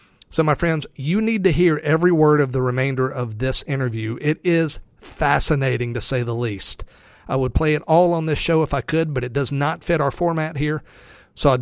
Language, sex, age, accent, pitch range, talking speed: English, male, 40-59, American, 125-150 Hz, 220 wpm